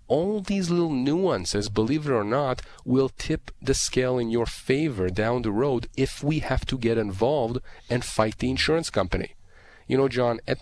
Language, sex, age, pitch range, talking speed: English, male, 30-49, 100-135 Hz, 185 wpm